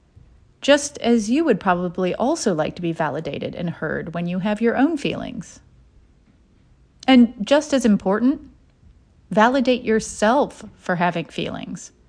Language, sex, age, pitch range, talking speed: English, female, 30-49, 185-260 Hz, 135 wpm